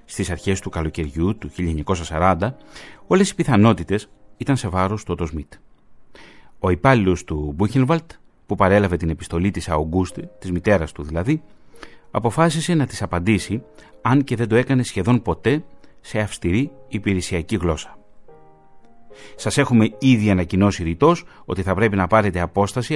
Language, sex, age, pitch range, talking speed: Greek, male, 30-49, 85-110 Hz, 140 wpm